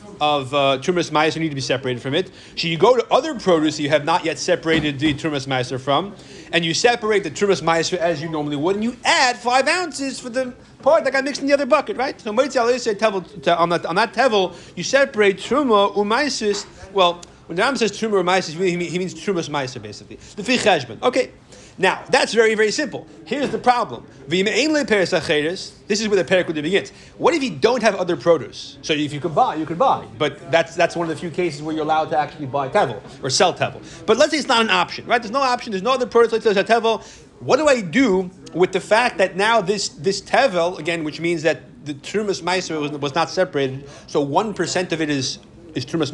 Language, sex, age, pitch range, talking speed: English, male, 30-49, 160-225 Hz, 220 wpm